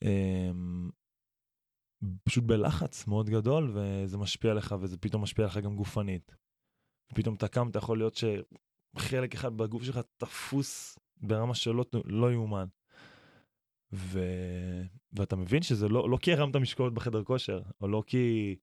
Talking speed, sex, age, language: 140 wpm, male, 20-39, Hebrew